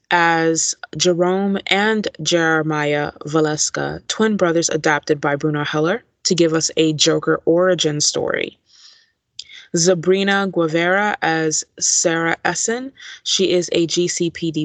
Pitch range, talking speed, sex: 155-180 Hz, 110 wpm, female